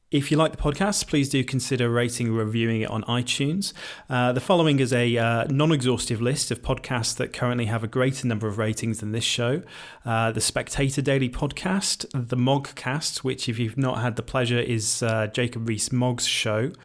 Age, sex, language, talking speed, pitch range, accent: 30-49, male, English, 195 wpm, 115-140 Hz, British